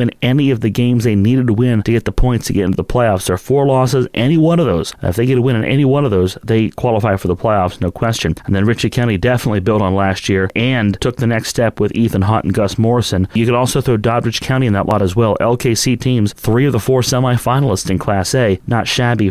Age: 30-49